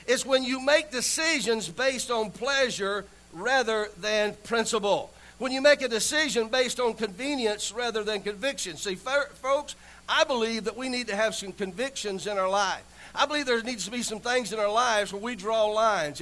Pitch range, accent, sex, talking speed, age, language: 210-255 Hz, American, male, 190 wpm, 60-79, English